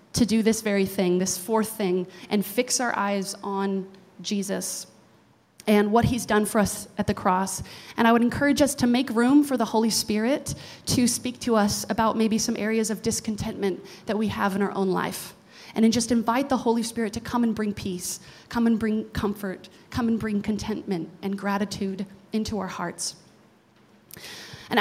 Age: 30-49